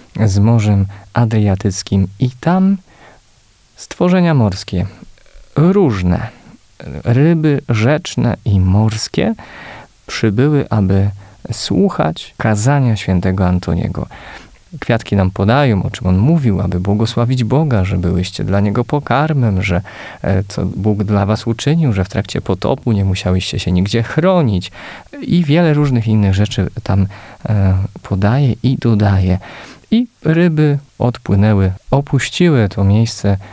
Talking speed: 115 wpm